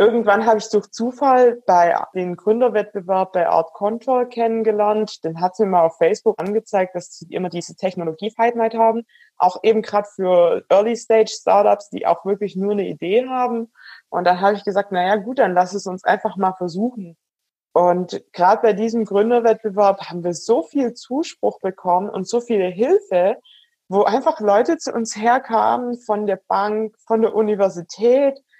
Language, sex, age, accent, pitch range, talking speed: German, female, 20-39, German, 180-230 Hz, 170 wpm